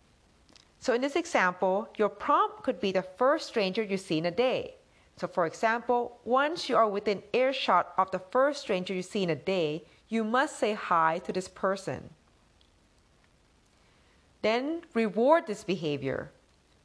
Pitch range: 180-250 Hz